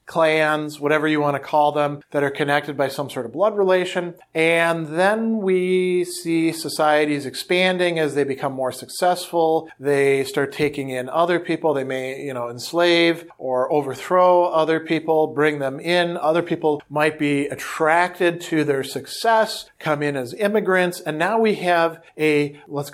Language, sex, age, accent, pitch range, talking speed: English, male, 40-59, American, 145-175 Hz, 160 wpm